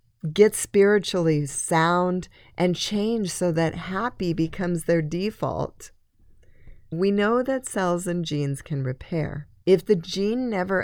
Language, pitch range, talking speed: English, 150-190 Hz, 125 wpm